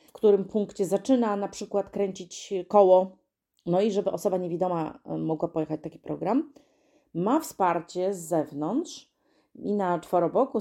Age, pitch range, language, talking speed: 30-49, 165-205 Hz, Polish, 135 wpm